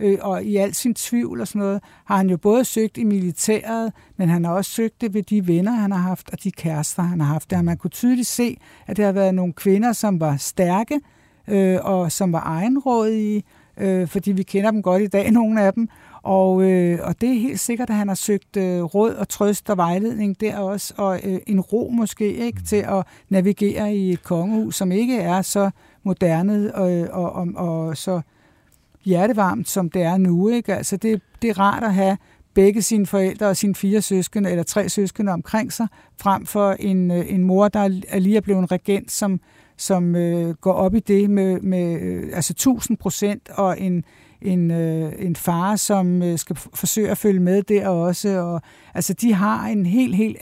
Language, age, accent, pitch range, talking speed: Danish, 60-79, native, 180-210 Hz, 210 wpm